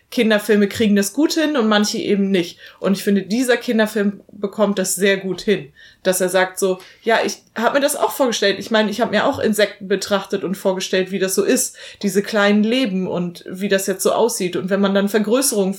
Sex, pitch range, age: female, 175-210 Hz, 30-49